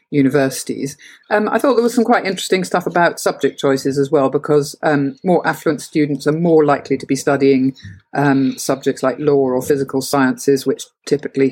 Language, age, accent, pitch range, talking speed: English, 50-69, British, 135-170 Hz, 180 wpm